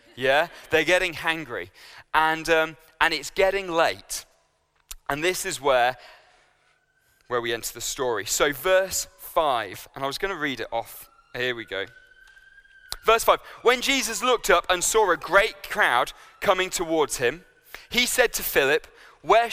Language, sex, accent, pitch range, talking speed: English, male, British, 130-200 Hz, 160 wpm